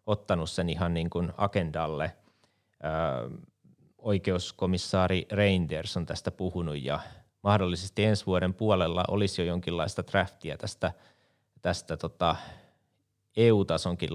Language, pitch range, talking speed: Finnish, 85-100 Hz, 105 wpm